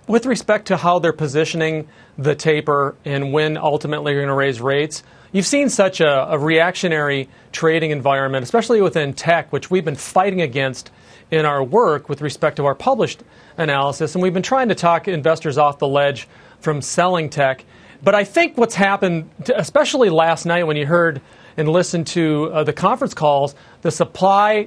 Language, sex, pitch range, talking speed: English, male, 150-185 Hz, 180 wpm